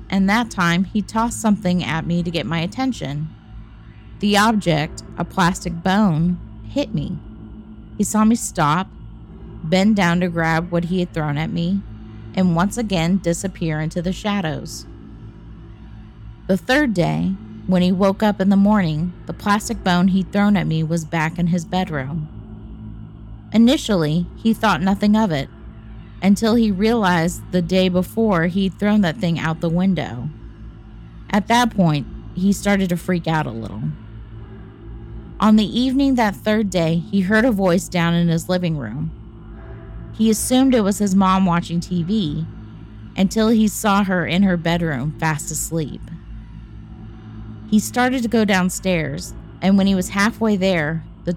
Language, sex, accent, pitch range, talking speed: English, female, American, 145-200 Hz, 160 wpm